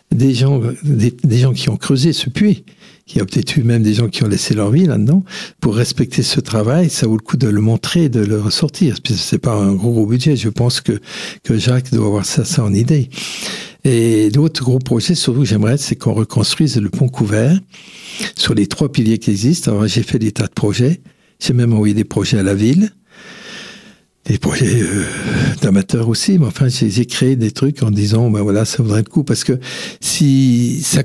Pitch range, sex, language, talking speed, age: 110-155 Hz, male, French, 215 wpm, 60-79